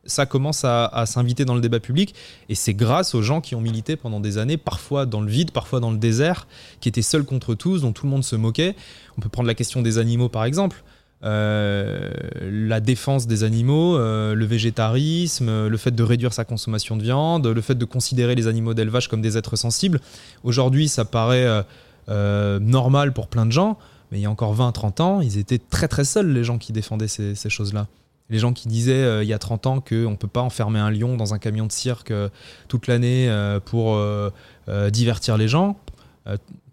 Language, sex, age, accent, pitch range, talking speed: French, male, 20-39, French, 110-130 Hz, 225 wpm